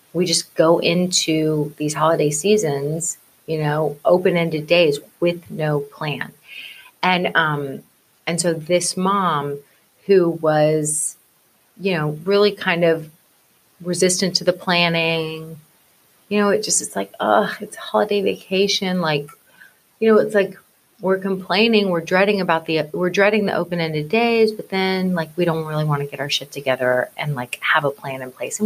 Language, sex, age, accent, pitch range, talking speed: English, female, 30-49, American, 155-200 Hz, 160 wpm